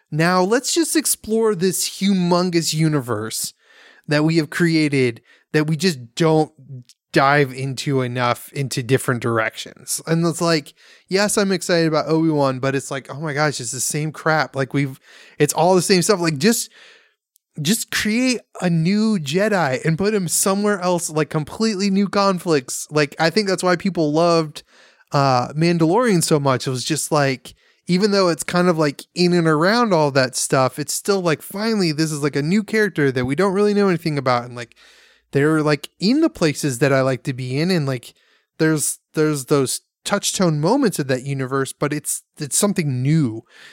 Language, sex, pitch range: English, male, 135-180 Hz